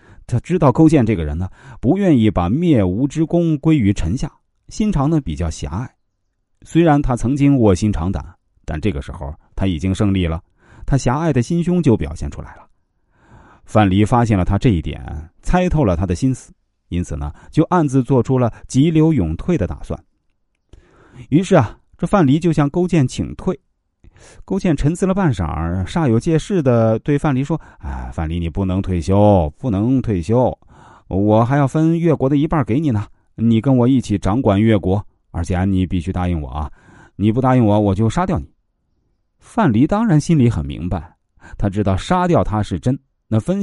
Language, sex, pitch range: Chinese, male, 90-145 Hz